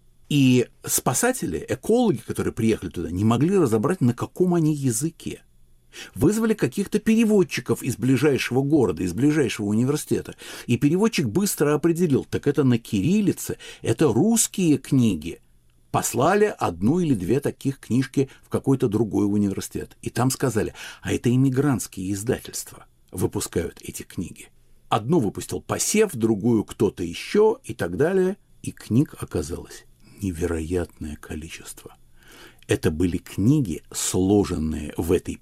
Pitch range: 90-140 Hz